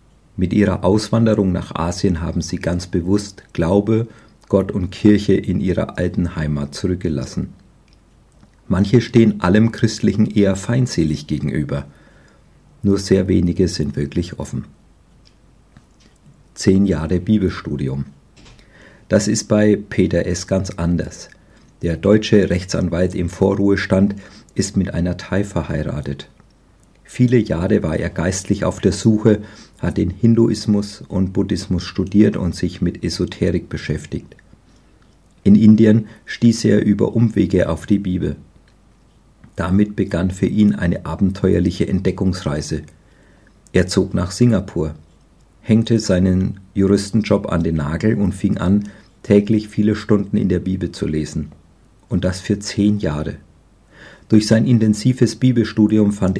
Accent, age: German, 50-69